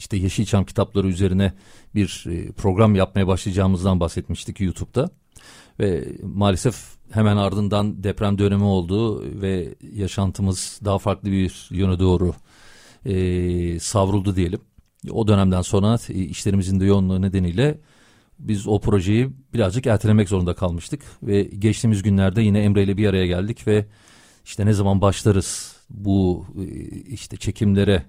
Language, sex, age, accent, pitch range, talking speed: Turkish, male, 40-59, native, 95-105 Hz, 125 wpm